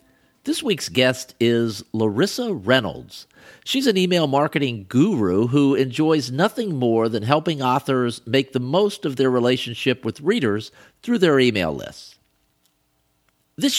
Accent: American